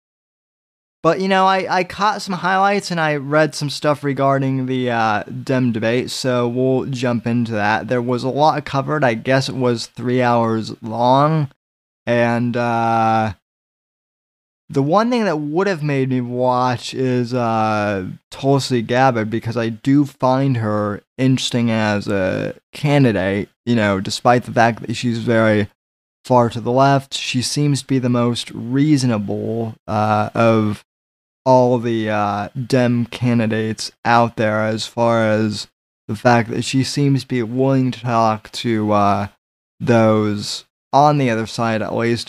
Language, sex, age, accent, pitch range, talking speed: English, male, 20-39, American, 110-130 Hz, 155 wpm